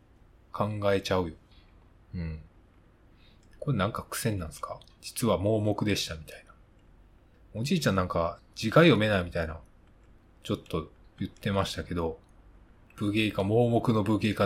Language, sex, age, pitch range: Japanese, male, 20-39, 90-110 Hz